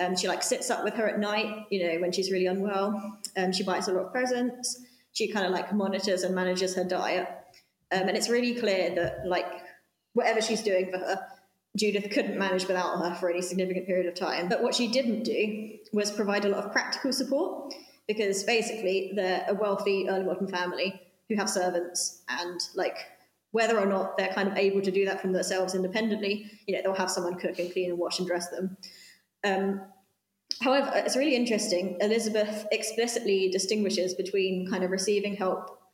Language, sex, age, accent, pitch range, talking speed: English, female, 20-39, British, 185-215 Hz, 195 wpm